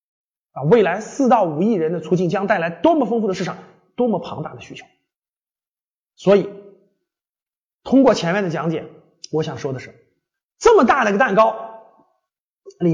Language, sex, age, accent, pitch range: Chinese, male, 30-49, native, 185-255 Hz